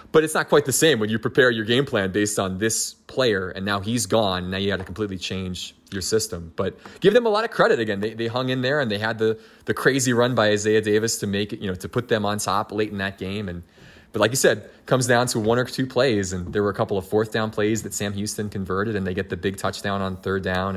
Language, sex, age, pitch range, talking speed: English, male, 20-39, 100-120 Hz, 290 wpm